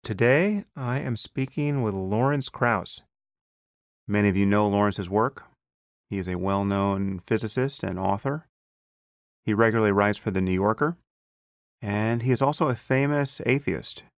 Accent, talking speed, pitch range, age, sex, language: American, 145 wpm, 95-115 Hz, 30-49, male, English